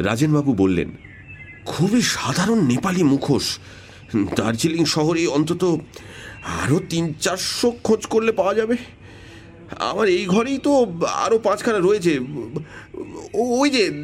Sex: male